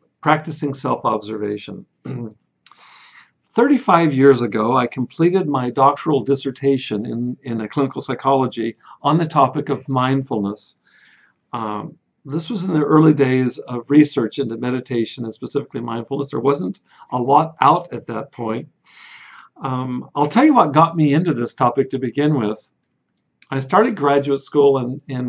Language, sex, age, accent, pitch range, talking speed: English, male, 50-69, American, 125-150 Hz, 140 wpm